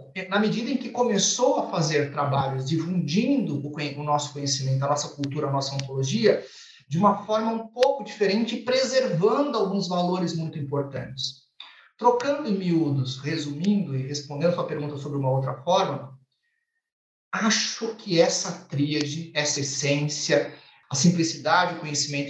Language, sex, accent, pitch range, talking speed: Portuguese, male, Brazilian, 145-205 Hz, 145 wpm